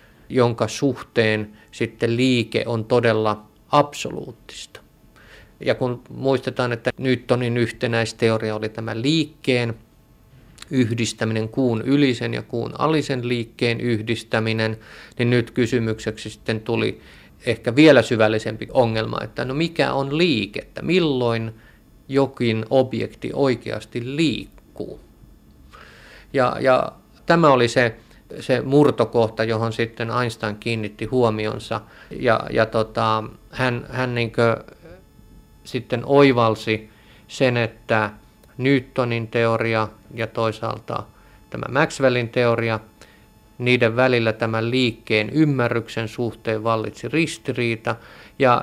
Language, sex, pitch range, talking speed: Finnish, male, 110-125 Hz, 95 wpm